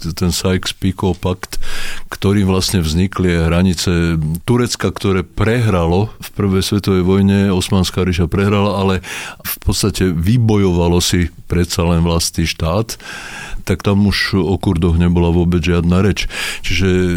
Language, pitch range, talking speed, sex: Slovak, 85-100 Hz, 125 wpm, male